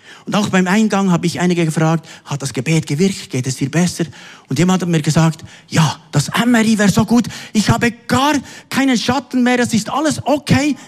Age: 50-69